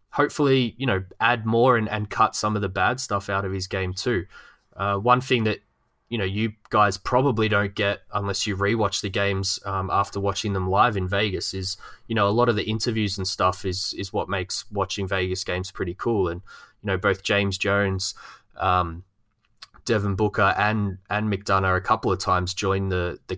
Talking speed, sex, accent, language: 205 wpm, male, Australian, English